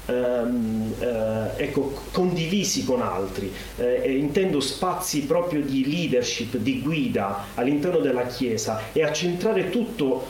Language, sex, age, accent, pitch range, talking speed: Italian, male, 30-49, native, 130-185 Hz, 115 wpm